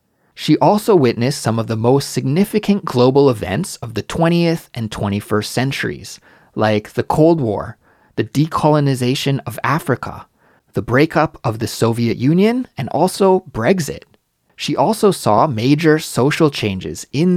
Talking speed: 140 wpm